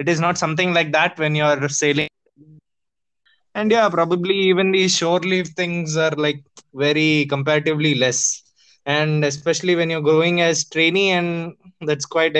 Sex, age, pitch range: male, 20-39, 140-160 Hz